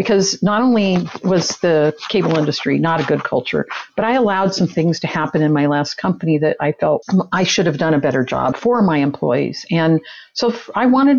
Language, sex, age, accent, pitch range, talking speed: English, female, 50-69, American, 155-205 Hz, 210 wpm